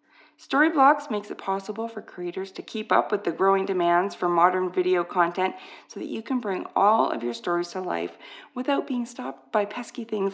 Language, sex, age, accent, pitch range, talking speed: English, female, 40-59, American, 180-285 Hz, 195 wpm